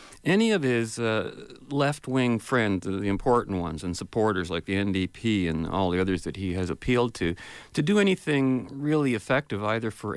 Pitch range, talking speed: 100-140 Hz, 185 wpm